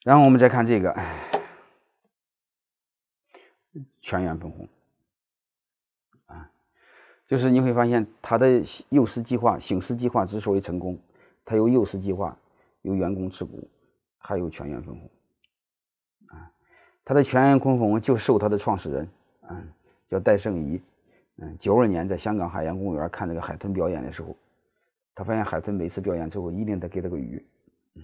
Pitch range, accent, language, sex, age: 85-115 Hz, native, Chinese, male, 30-49